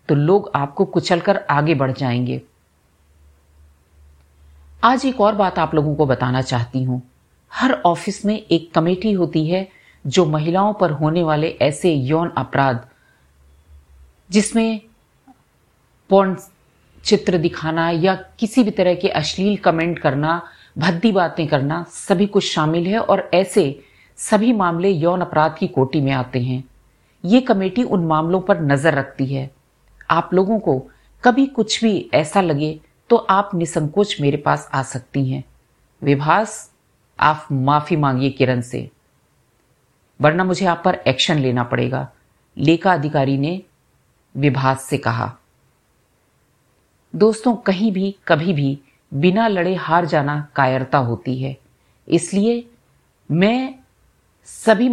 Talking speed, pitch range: 130 wpm, 135-190 Hz